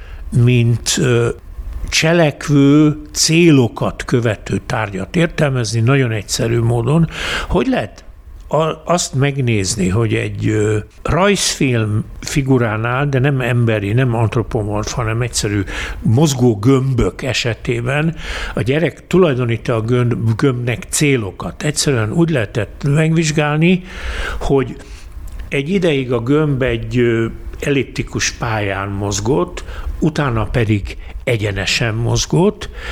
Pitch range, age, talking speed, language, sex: 105-140 Hz, 60-79, 90 wpm, Hungarian, male